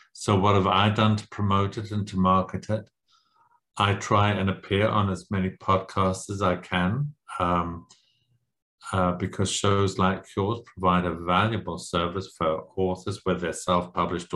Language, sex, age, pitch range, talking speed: English, male, 50-69, 90-105 Hz, 160 wpm